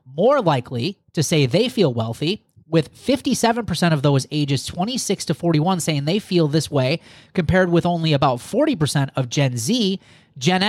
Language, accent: English, American